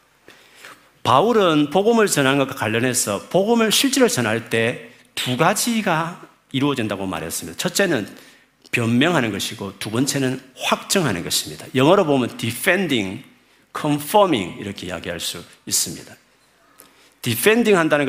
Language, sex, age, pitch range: Korean, male, 50-69, 115-150 Hz